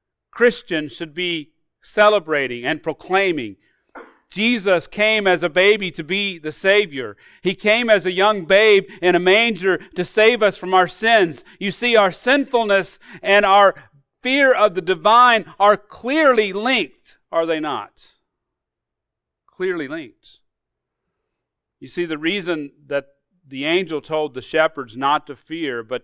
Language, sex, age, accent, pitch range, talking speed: English, male, 40-59, American, 140-205 Hz, 145 wpm